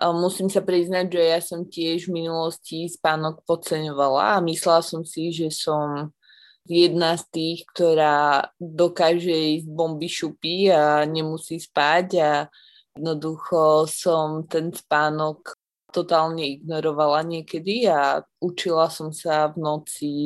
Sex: female